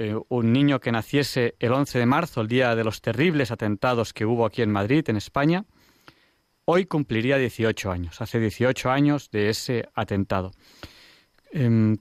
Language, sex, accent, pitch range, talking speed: Spanish, male, Spanish, 110-140 Hz, 165 wpm